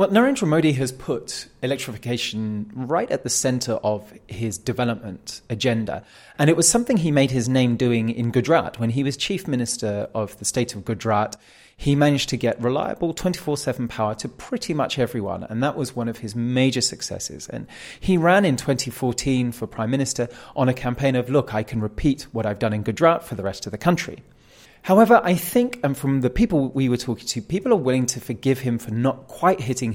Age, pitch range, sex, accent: 30-49, 110-140 Hz, male, British